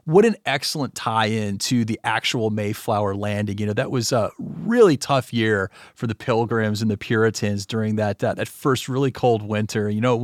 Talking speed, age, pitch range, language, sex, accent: 195 wpm, 30-49, 115-160 Hz, English, male, American